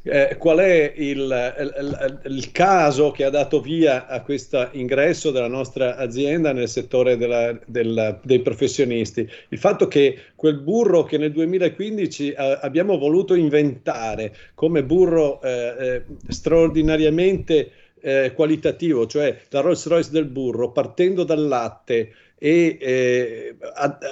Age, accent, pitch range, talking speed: 50-69, native, 125-160 Hz, 135 wpm